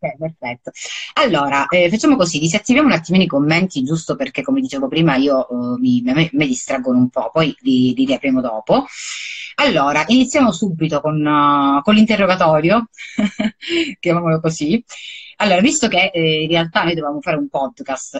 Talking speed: 160 wpm